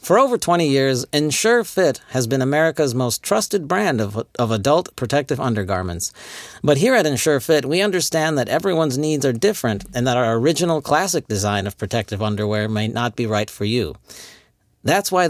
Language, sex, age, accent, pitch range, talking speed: English, male, 40-59, American, 130-180 Hz, 175 wpm